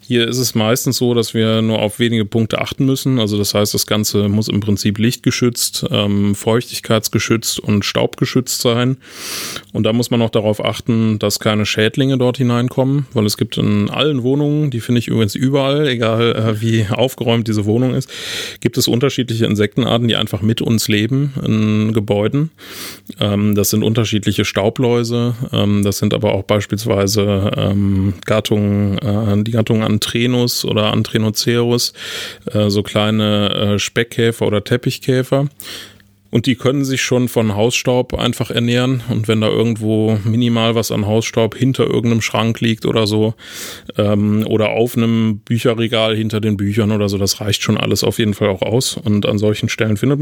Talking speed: 170 wpm